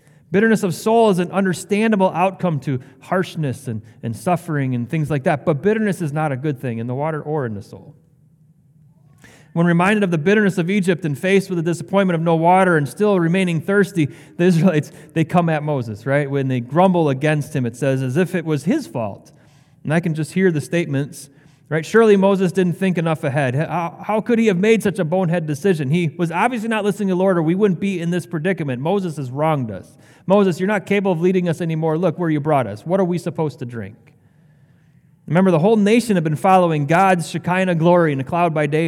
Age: 30-49